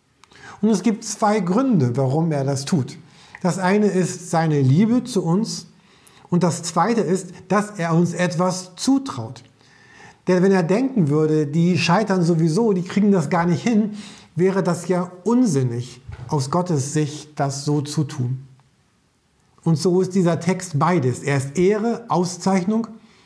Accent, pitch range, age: German, 150-195 Hz, 50-69